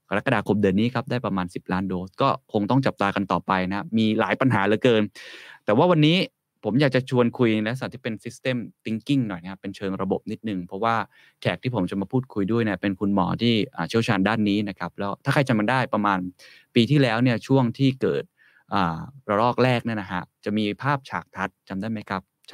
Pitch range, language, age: 95-125 Hz, Thai, 20-39